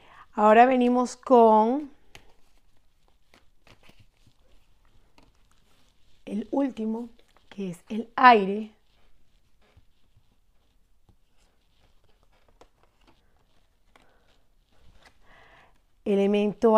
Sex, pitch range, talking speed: female, 195-240 Hz, 35 wpm